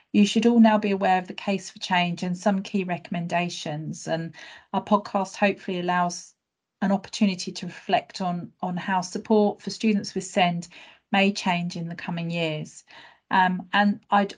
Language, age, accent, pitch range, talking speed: English, 40-59, British, 175-205 Hz, 170 wpm